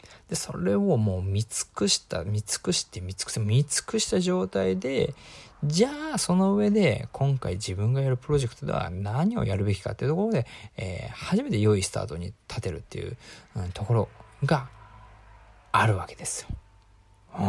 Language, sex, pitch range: Japanese, male, 100-130 Hz